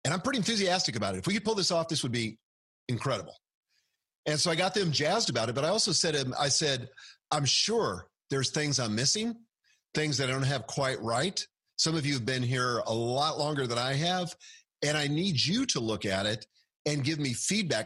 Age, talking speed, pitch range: 40-59, 220 wpm, 115-150 Hz